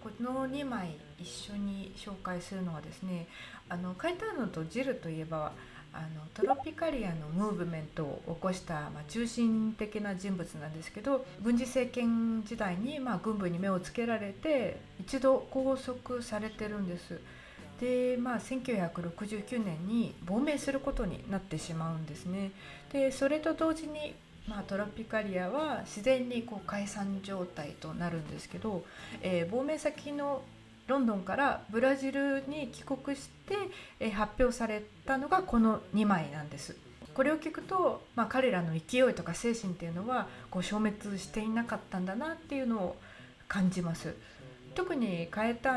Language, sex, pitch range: Japanese, female, 180-260 Hz